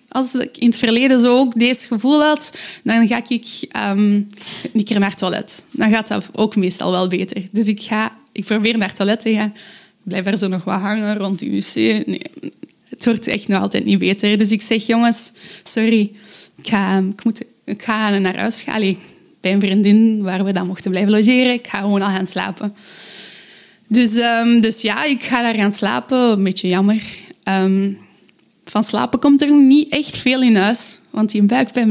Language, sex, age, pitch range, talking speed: Dutch, female, 20-39, 200-235 Hz, 190 wpm